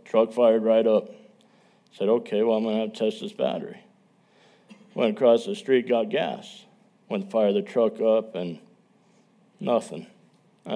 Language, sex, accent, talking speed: English, male, American, 165 wpm